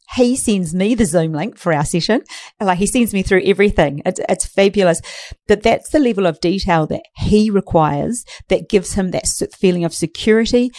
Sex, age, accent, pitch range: female, 40-59, Australian, 170-220 Hz